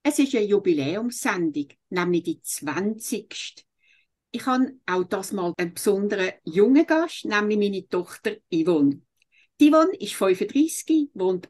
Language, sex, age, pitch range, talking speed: English, female, 60-79, 195-280 Hz, 130 wpm